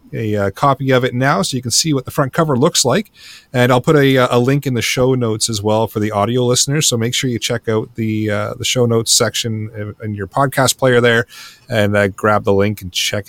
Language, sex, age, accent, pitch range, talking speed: English, male, 30-49, American, 110-160 Hz, 250 wpm